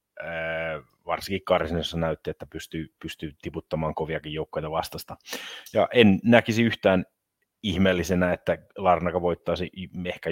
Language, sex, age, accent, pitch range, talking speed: Finnish, male, 30-49, native, 85-95 Hz, 110 wpm